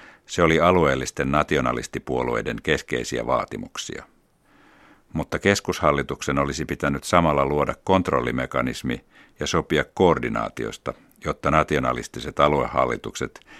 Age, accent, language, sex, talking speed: 60-79, native, Finnish, male, 85 wpm